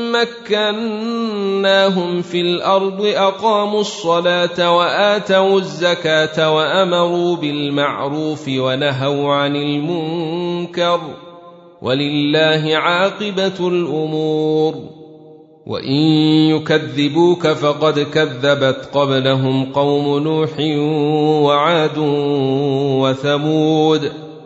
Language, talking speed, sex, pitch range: Arabic, 60 wpm, male, 150-175 Hz